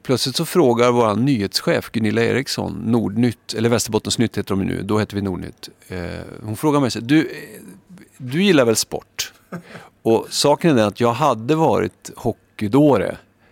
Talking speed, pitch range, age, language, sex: 155 wpm, 100-130 Hz, 50-69, English, male